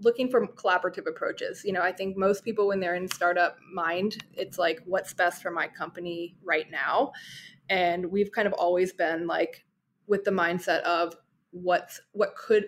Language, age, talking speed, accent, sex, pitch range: English, 20-39, 180 wpm, American, female, 175-200 Hz